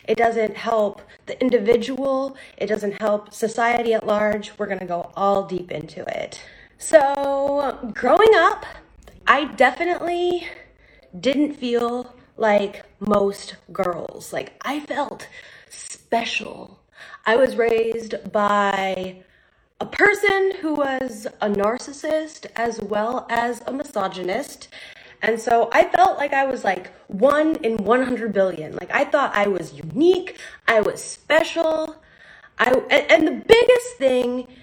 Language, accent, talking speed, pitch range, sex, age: English, American, 130 wpm, 210-285 Hz, female, 20-39